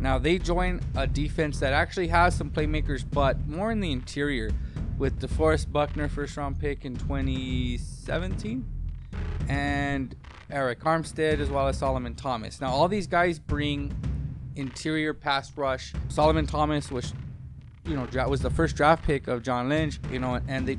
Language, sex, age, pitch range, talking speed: English, male, 20-39, 120-145 Hz, 160 wpm